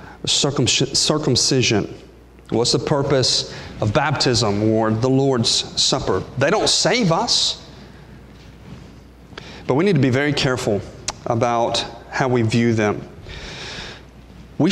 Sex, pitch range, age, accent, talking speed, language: male, 125-185 Hz, 40-59, American, 110 wpm, English